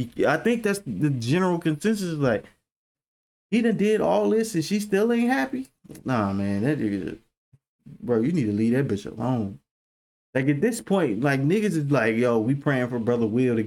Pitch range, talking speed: 110-150 Hz, 195 wpm